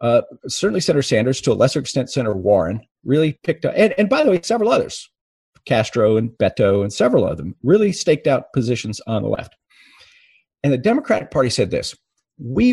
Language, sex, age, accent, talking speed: English, male, 50-69, American, 195 wpm